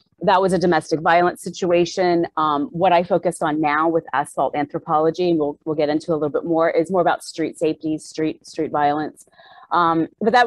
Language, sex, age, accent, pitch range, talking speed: English, female, 30-49, American, 165-205 Hz, 200 wpm